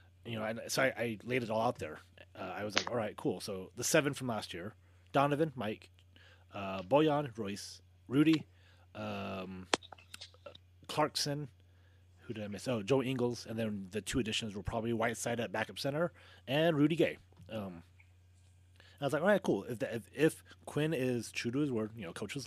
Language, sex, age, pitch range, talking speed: English, male, 30-49, 95-125 Hz, 190 wpm